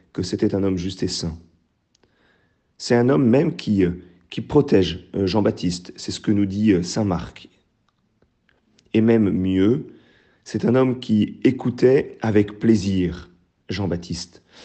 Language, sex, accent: French, male, French